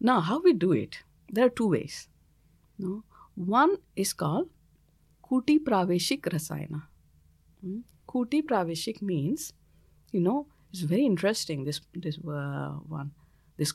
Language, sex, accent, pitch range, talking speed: Swedish, female, Indian, 145-200 Hz, 135 wpm